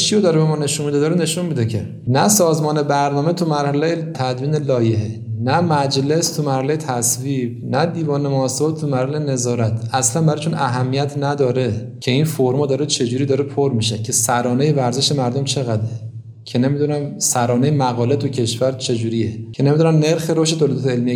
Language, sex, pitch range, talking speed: Persian, male, 120-145 Hz, 165 wpm